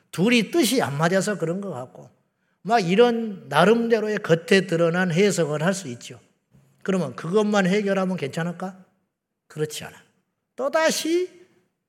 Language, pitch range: Korean, 170-235 Hz